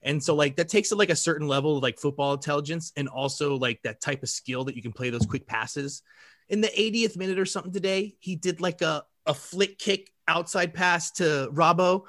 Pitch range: 140-185 Hz